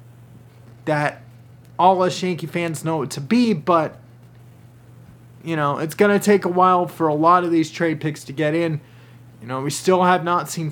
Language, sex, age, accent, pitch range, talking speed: English, male, 30-49, American, 125-185 Hz, 190 wpm